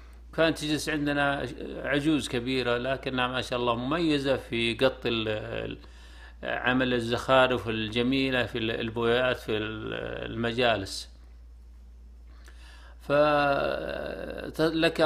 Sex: male